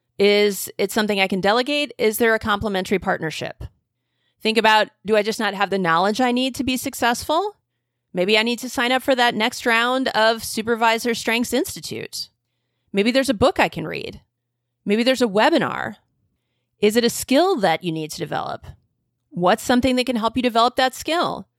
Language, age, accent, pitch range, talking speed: English, 30-49, American, 185-255 Hz, 190 wpm